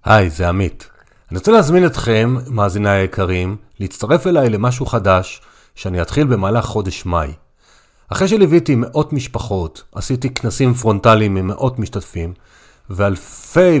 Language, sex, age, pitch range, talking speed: Hebrew, male, 40-59, 100-130 Hz, 125 wpm